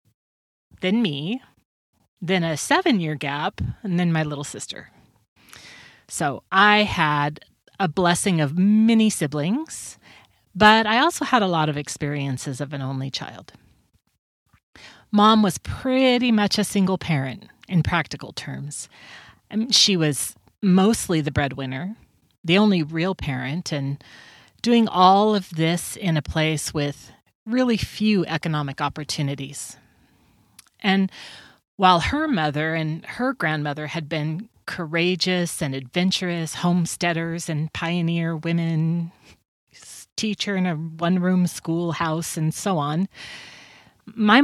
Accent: American